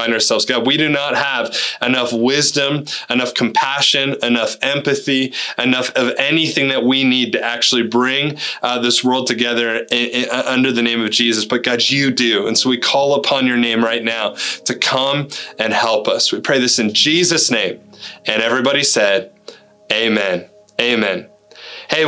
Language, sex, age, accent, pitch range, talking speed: English, male, 20-39, American, 120-145 Hz, 165 wpm